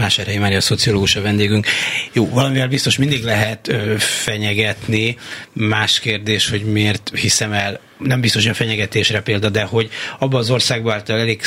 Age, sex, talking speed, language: 30-49, male, 155 wpm, Hungarian